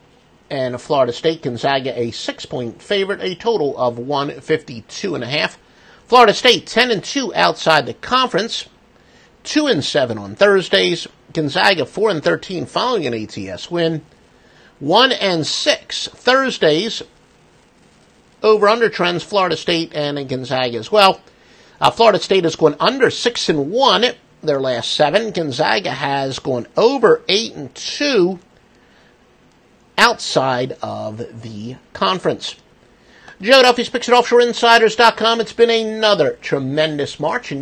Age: 50-69